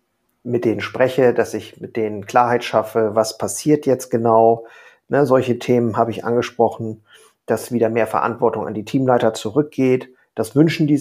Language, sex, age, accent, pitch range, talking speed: German, male, 40-59, German, 110-125 Hz, 165 wpm